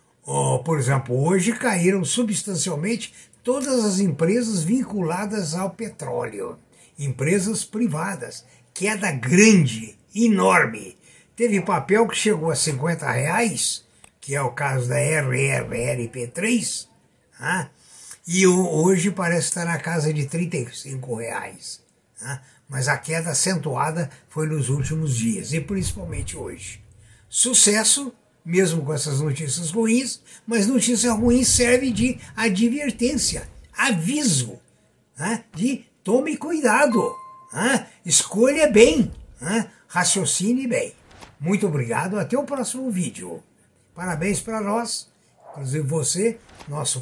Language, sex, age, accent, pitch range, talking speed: Portuguese, male, 60-79, Brazilian, 145-225 Hz, 110 wpm